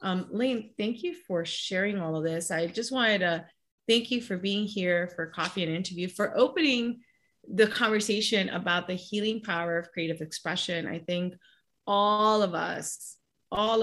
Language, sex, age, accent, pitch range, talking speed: English, female, 30-49, American, 165-195 Hz, 170 wpm